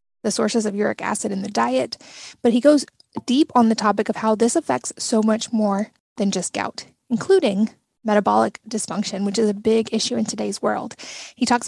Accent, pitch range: American, 205-235 Hz